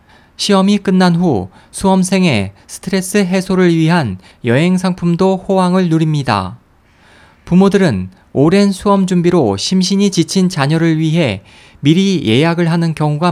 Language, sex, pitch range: Korean, male, 120-185 Hz